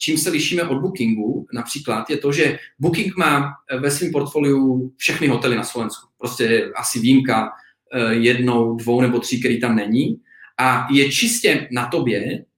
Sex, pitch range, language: male, 115-140 Hz, Slovak